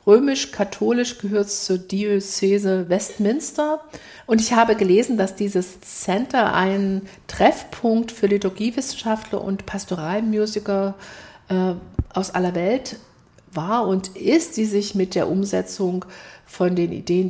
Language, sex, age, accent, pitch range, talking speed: German, female, 50-69, German, 185-220 Hz, 115 wpm